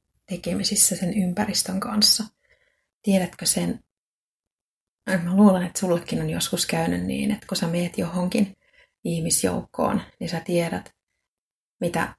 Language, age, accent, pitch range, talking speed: Finnish, 30-49, native, 165-205 Hz, 120 wpm